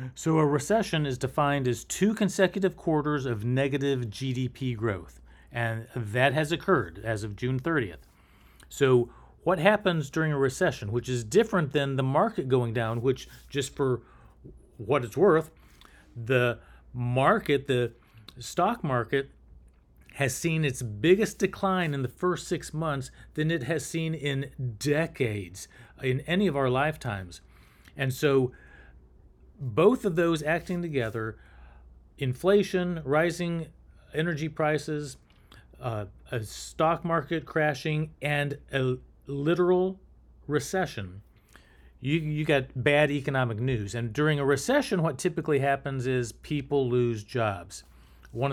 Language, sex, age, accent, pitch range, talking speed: English, male, 40-59, American, 120-160 Hz, 130 wpm